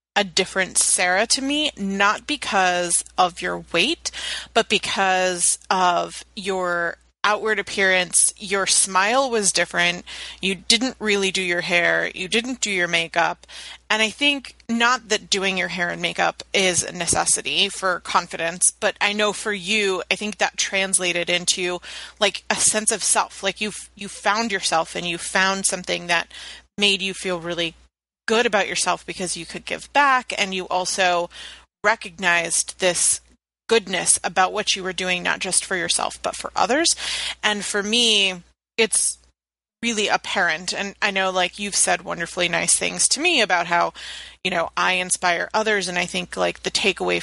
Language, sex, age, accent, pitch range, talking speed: English, female, 30-49, American, 180-210 Hz, 165 wpm